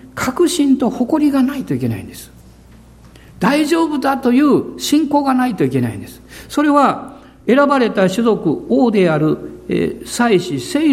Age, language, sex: 60-79, Japanese, male